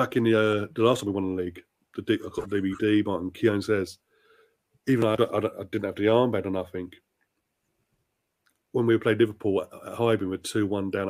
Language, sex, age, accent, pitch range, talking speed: English, male, 30-49, British, 100-115 Hz, 215 wpm